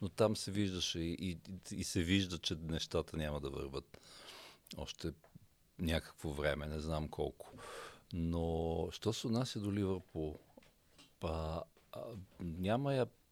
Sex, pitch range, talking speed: male, 80-100 Hz, 120 wpm